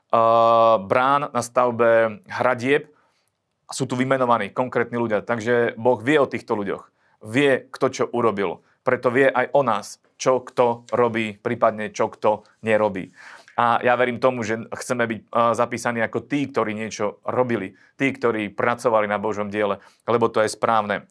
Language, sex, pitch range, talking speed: Slovak, male, 110-130 Hz, 155 wpm